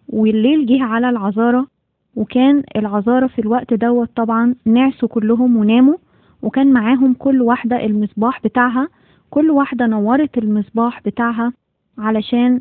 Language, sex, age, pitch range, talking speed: Arabic, female, 20-39, 220-260 Hz, 120 wpm